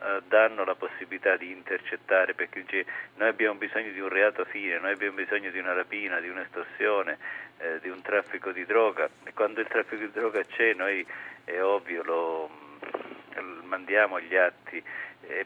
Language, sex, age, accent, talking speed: Italian, male, 50-69, native, 165 wpm